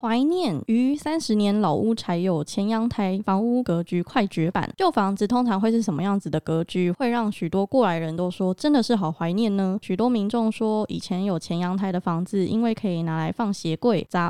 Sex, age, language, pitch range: female, 20-39, Chinese, 175-220 Hz